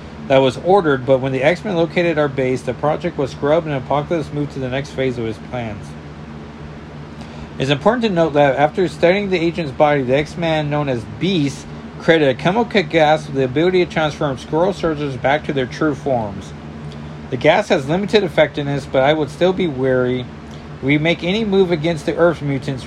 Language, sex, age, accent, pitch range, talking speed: English, male, 40-59, American, 115-160 Hz, 195 wpm